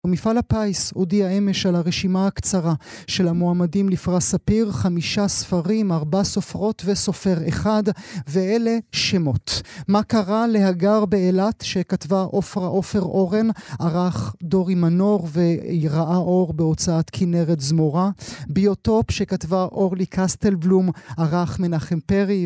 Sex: male